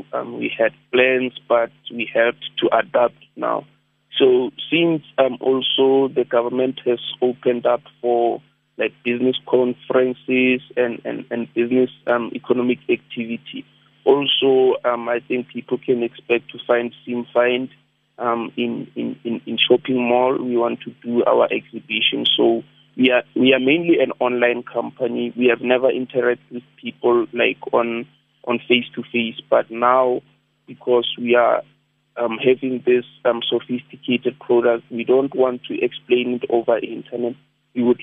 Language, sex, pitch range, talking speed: English, male, 120-130 Hz, 150 wpm